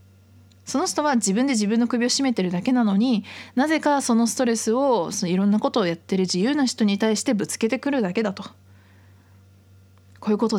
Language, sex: Japanese, female